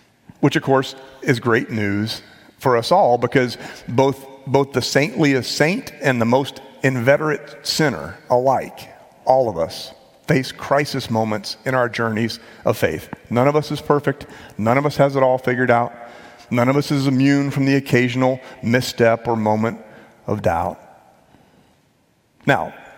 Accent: American